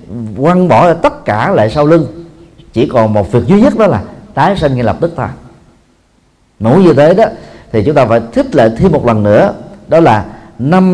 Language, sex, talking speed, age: Vietnamese, male, 210 wpm, 40-59